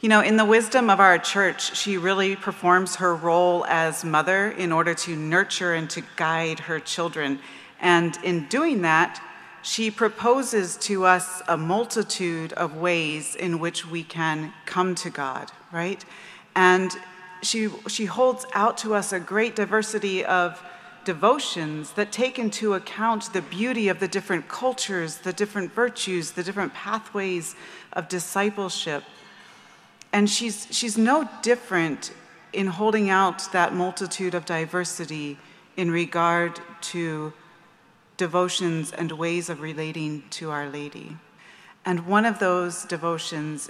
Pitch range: 170-205 Hz